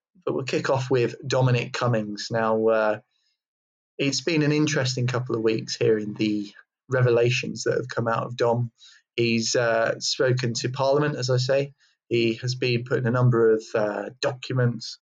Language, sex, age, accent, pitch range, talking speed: English, male, 20-39, British, 115-135 Hz, 170 wpm